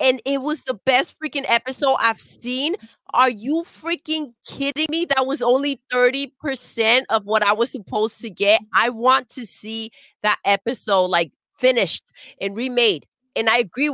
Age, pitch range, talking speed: 30-49, 190-255 Hz, 165 wpm